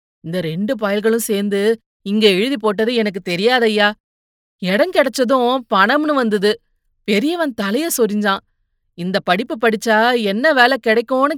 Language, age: Tamil, 30-49